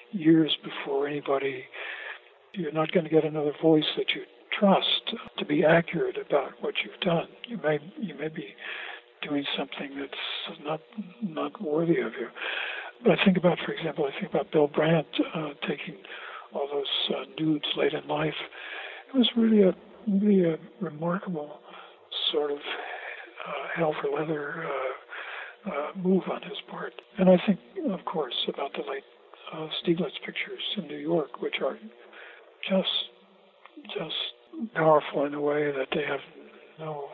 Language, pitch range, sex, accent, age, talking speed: English, 155-210 Hz, male, American, 60-79, 160 wpm